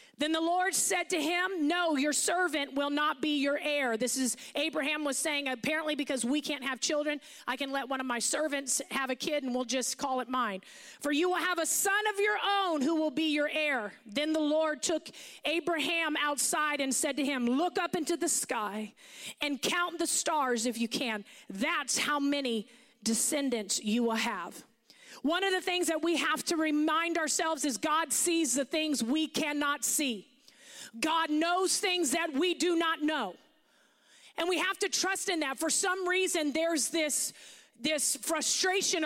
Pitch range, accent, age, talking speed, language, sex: 280-345 Hz, American, 40-59, 190 wpm, English, female